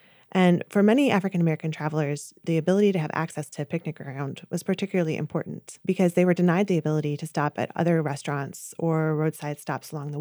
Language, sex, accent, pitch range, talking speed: English, female, American, 155-195 Hz, 195 wpm